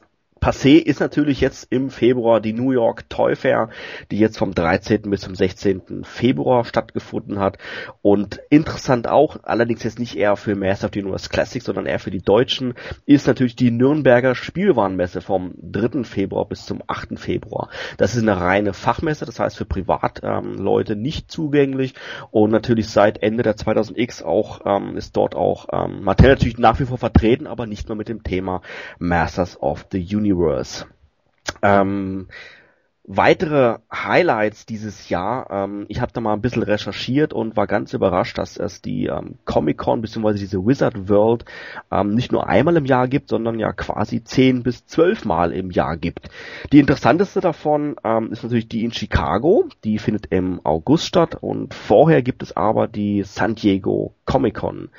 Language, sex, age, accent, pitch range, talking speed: German, male, 30-49, German, 100-120 Hz, 170 wpm